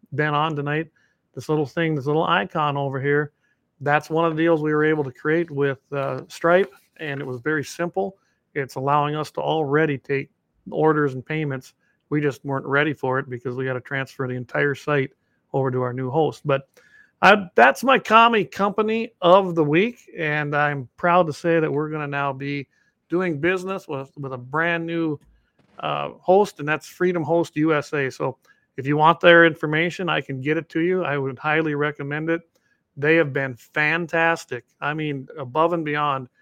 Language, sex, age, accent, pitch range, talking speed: English, male, 50-69, American, 135-165 Hz, 195 wpm